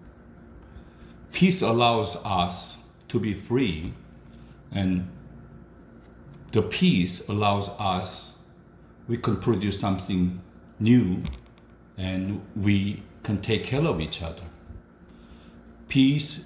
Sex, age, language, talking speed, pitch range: male, 60-79, English, 90 wpm, 90-120 Hz